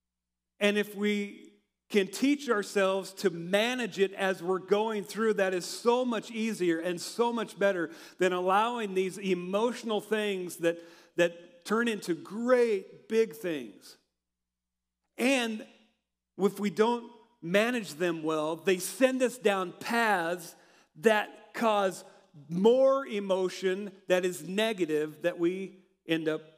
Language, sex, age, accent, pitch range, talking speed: English, male, 50-69, American, 155-215 Hz, 130 wpm